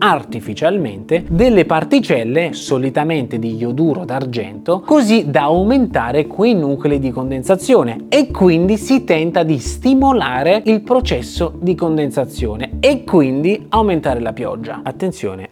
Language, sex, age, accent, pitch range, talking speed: Italian, male, 30-49, native, 130-190 Hz, 115 wpm